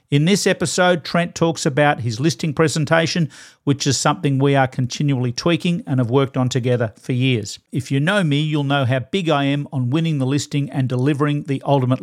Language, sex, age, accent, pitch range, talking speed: English, male, 50-69, Australian, 130-155 Hz, 205 wpm